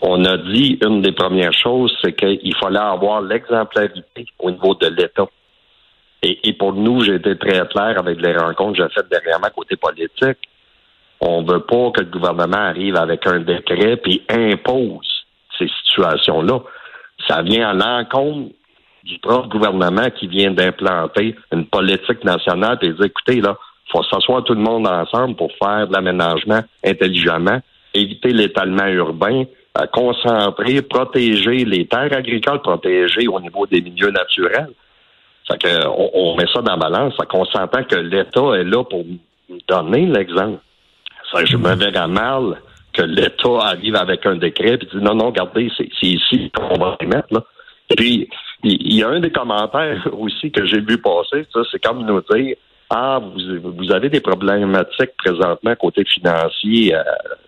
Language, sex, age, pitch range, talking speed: French, male, 50-69, 95-125 Hz, 175 wpm